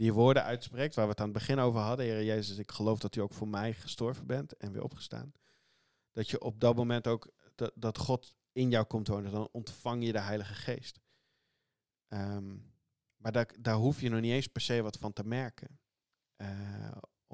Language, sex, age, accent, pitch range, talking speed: Dutch, male, 40-59, Dutch, 105-125 Hz, 210 wpm